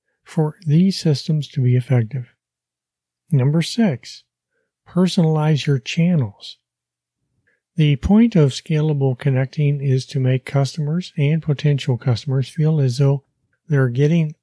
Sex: male